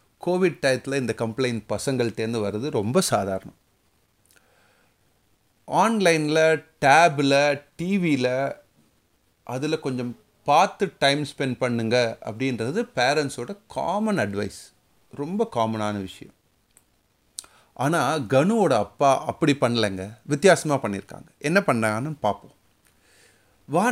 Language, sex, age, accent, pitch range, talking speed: Tamil, male, 30-49, native, 115-175 Hz, 90 wpm